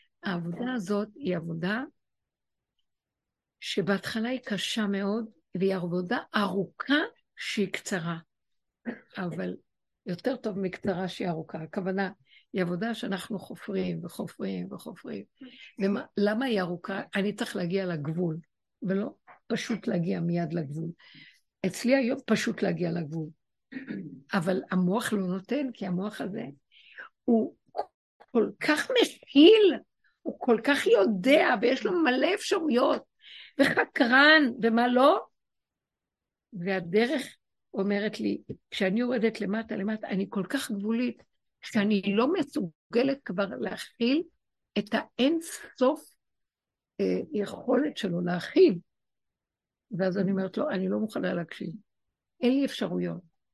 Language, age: Hebrew, 60-79